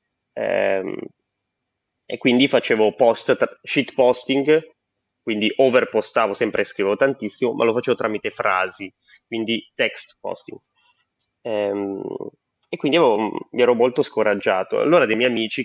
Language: Italian